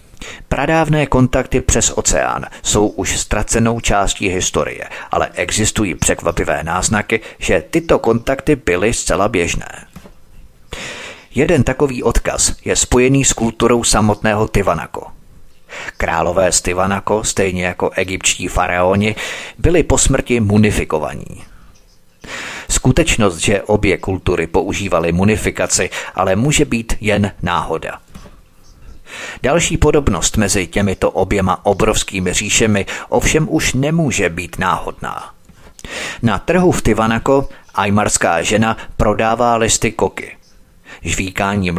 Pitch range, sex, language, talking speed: 95-120 Hz, male, Czech, 105 wpm